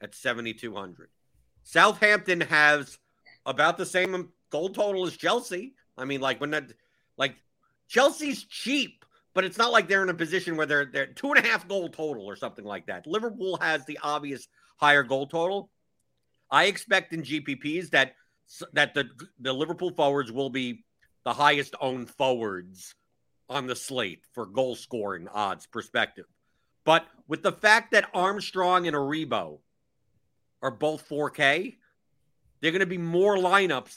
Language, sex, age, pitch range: English, male, 50-69, 130-185 Hz